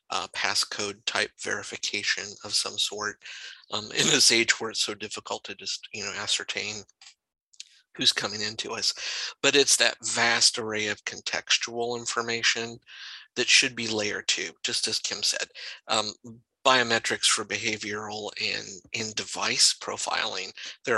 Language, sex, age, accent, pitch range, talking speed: English, male, 50-69, American, 110-125 Hz, 140 wpm